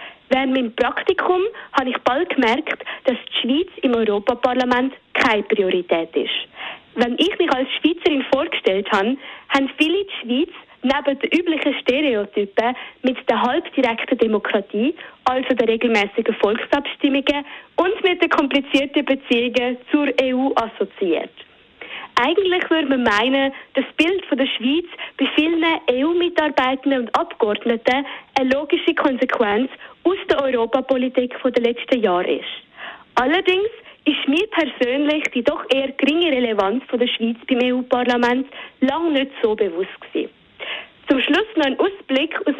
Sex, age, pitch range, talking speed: female, 20-39, 250-310 Hz, 130 wpm